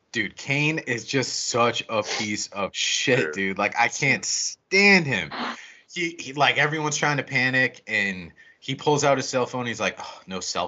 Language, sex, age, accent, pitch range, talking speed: English, male, 30-49, American, 125-175 Hz, 195 wpm